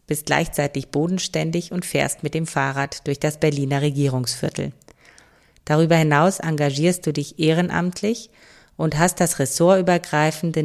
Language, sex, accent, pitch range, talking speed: German, female, German, 150-190 Hz, 125 wpm